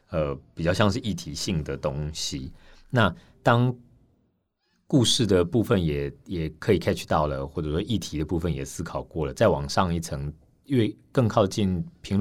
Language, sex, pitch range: Chinese, male, 75-90 Hz